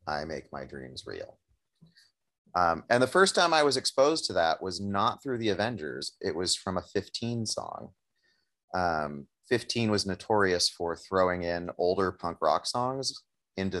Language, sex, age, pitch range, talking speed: English, male, 30-49, 85-105 Hz, 165 wpm